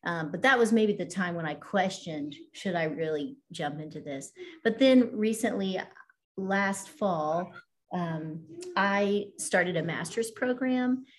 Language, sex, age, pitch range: English, female, 40-59, 175-230 Hz